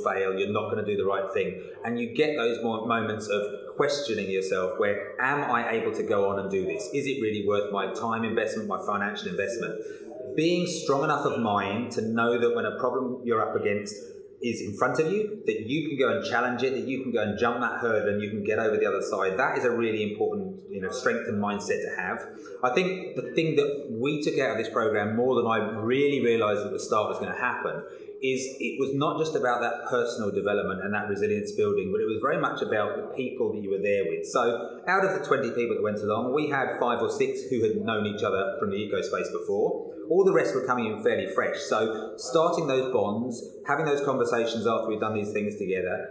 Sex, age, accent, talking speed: male, 30-49, British, 240 wpm